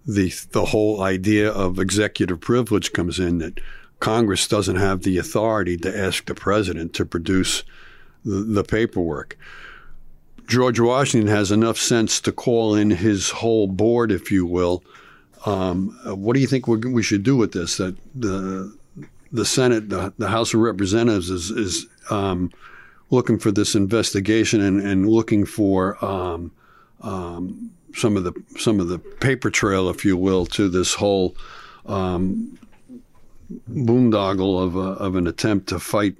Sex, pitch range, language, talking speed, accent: male, 95-115 Hz, English, 150 wpm, American